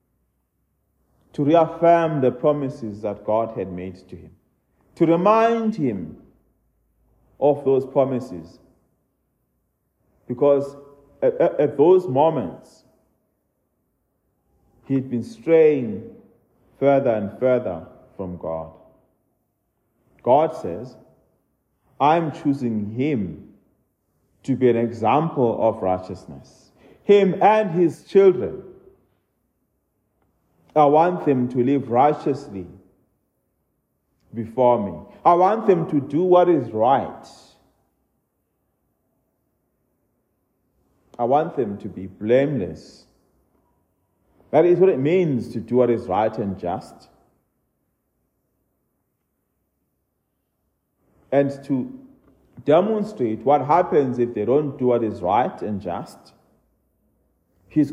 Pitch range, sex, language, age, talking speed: 105-160 Hz, male, English, 40-59, 95 wpm